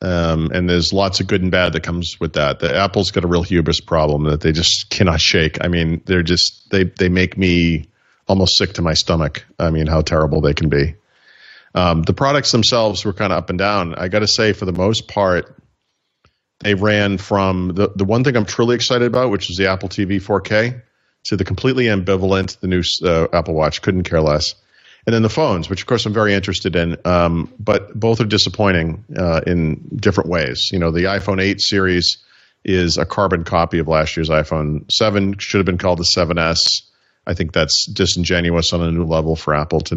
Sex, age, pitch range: male, 40-59, 85-100 Hz